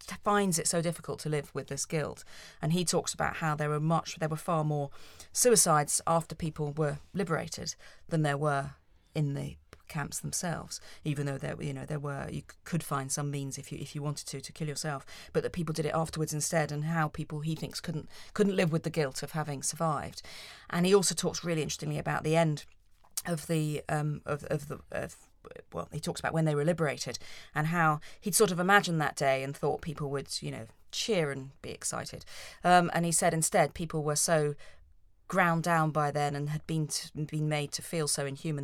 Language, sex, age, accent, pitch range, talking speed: English, female, 40-59, British, 140-165 Hz, 215 wpm